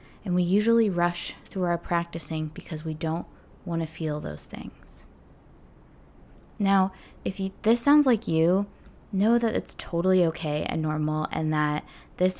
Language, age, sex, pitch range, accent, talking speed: English, 20-39, female, 160-215 Hz, American, 155 wpm